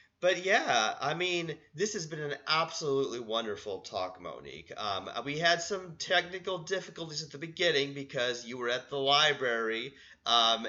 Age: 30-49